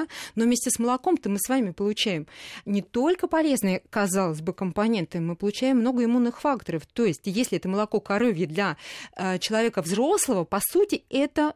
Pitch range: 180-235 Hz